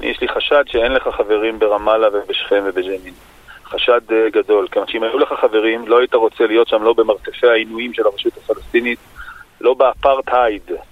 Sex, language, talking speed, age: male, Hebrew, 160 wpm, 40-59